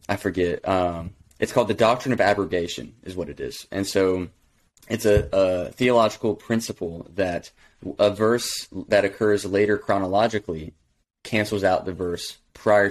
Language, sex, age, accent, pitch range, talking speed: English, male, 20-39, American, 90-110 Hz, 150 wpm